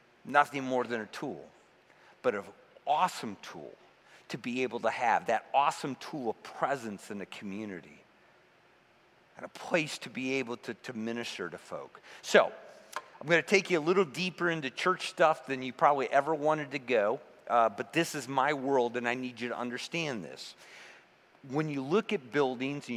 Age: 50-69